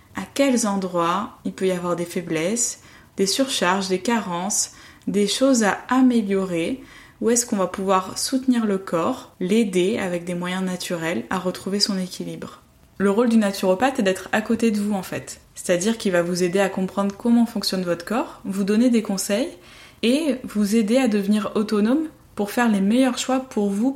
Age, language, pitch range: 20-39, French, 185-225 Hz